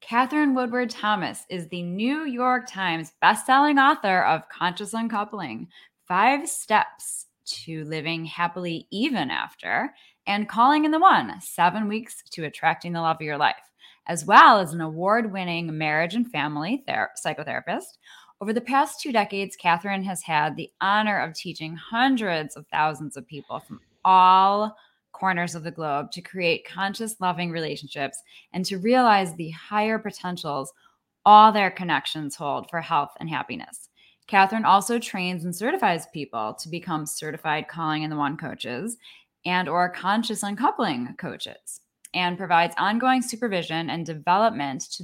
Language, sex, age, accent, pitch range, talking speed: English, female, 10-29, American, 160-220 Hz, 150 wpm